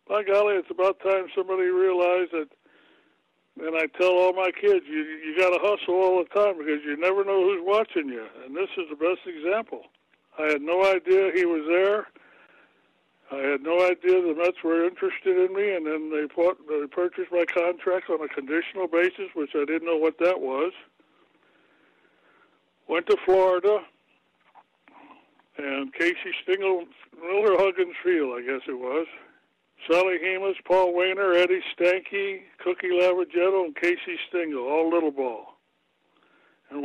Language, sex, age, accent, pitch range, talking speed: English, male, 60-79, American, 155-190 Hz, 160 wpm